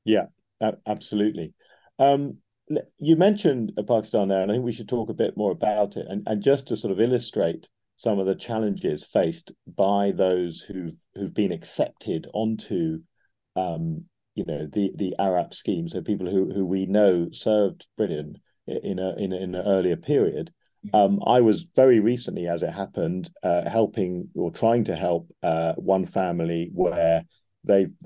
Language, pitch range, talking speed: English, 95-115 Hz, 170 wpm